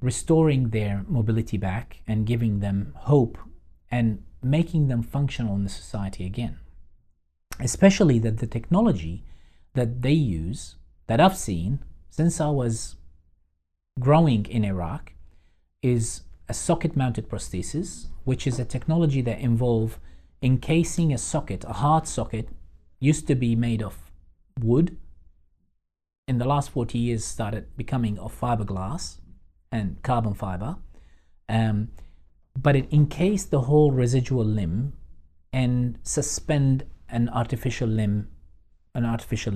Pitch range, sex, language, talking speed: 90-135 Hz, male, English, 125 wpm